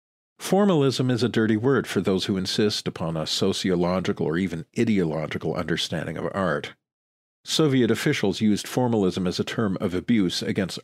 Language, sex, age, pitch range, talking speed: English, male, 50-69, 90-110 Hz, 155 wpm